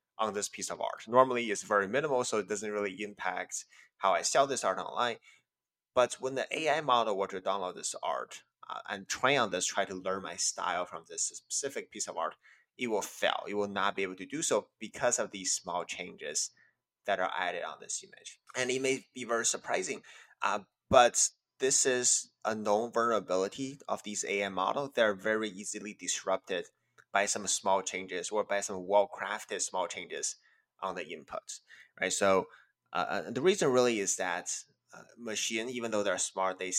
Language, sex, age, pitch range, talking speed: English, male, 20-39, 100-130 Hz, 190 wpm